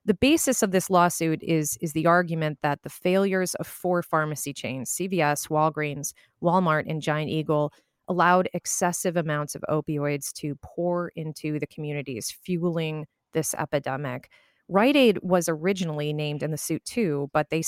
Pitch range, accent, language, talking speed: 150-180 Hz, American, English, 155 wpm